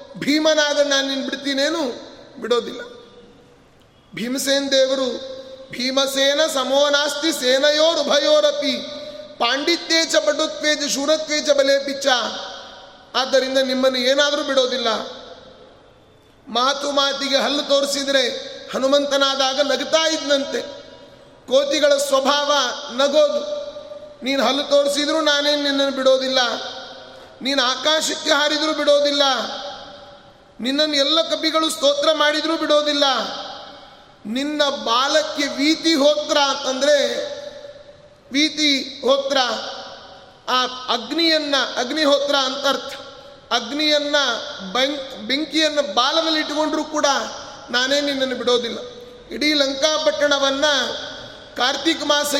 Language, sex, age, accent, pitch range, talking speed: Kannada, male, 30-49, native, 265-295 Hz, 80 wpm